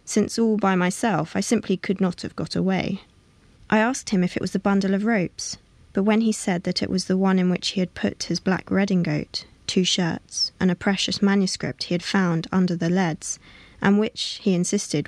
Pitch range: 180-205 Hz